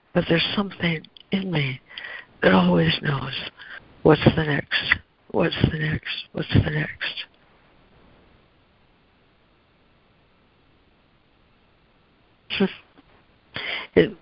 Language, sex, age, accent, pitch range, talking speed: English, female, 60-79, American, 145-170 Hz, 80 wpm